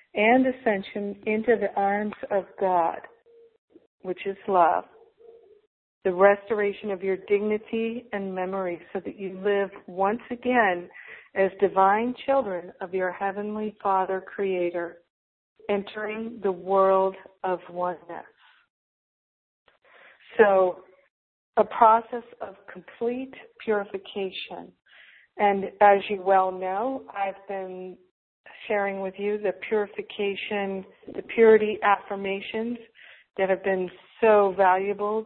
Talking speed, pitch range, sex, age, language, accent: 105 wpm, 190-230 Hz, female, 50-69, English, American